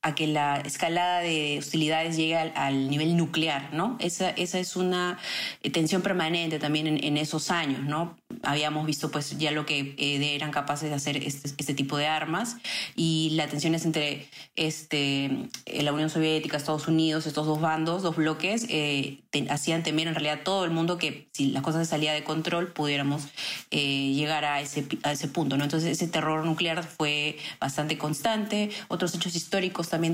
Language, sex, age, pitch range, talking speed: Spanish, female, 30-49, 145-165 Hz, 180 wpm